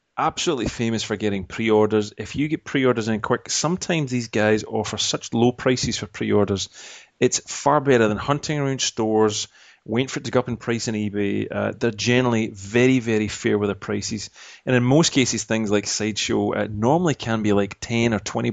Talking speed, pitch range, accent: 200 wpm, 105-130 Hz, British